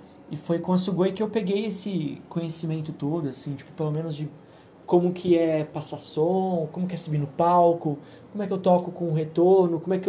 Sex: male